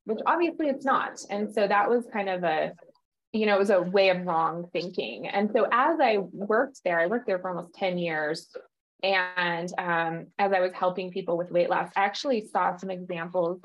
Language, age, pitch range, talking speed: English, 20-39, 180-245 Hz, 210 wpm